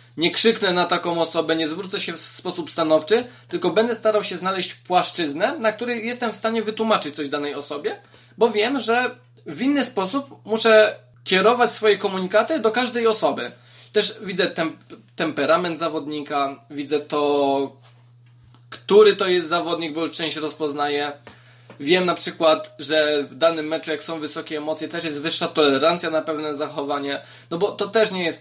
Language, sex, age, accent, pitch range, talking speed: Polish, male, 20-39, native, 155-215 Hz, 165 wpm